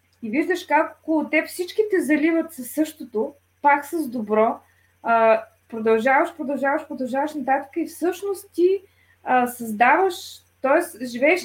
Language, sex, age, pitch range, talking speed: Bulgarian, female, 20-39, 230-320 Hz, 130 wpm